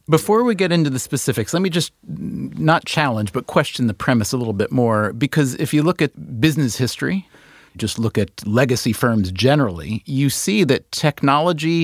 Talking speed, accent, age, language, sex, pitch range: 185 wpm, American, 40-59, English, male, 105-145 Hz